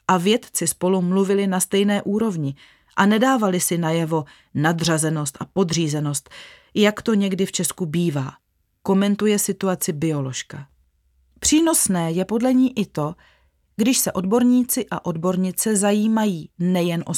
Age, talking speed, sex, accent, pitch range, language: 30-49, 130 wpm, female, native, 165-215 Hz, Czech